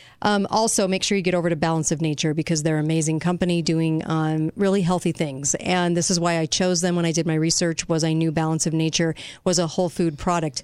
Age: 40-59